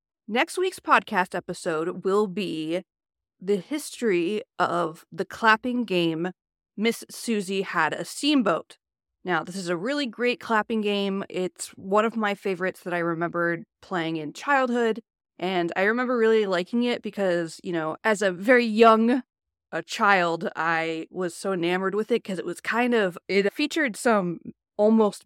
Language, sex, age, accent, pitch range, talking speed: English, female, 30-49, American, 175-225 Hz, 155 wpm